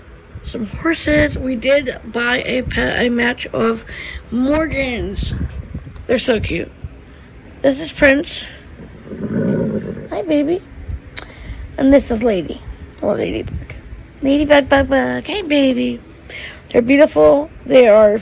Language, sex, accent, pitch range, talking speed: English, female, American, 235-275 Hz, 115 wpm